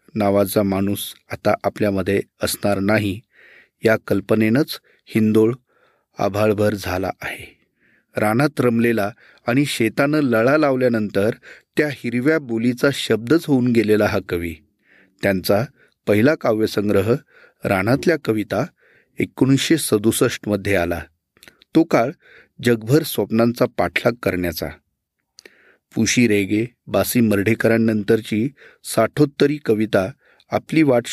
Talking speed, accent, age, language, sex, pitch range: 95 wpm, native, 30-49, Marathi, male, 105-135 Hz